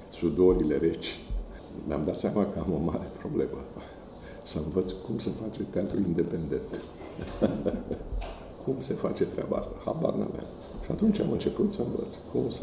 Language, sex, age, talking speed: Romanian, male, 50-69, 150 wpm